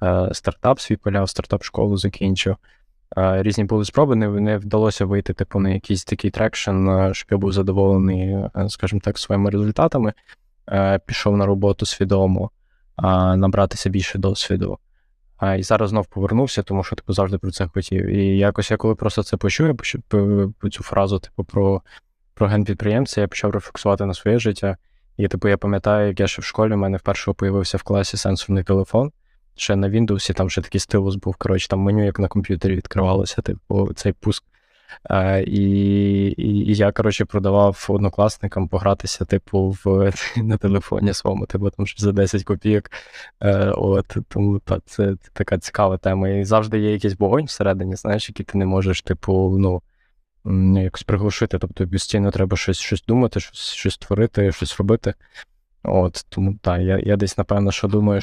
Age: 20-39